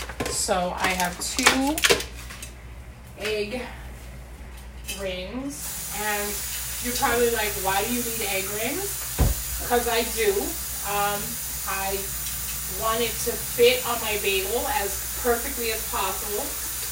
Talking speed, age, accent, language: 115 wpm, 30-49, American, English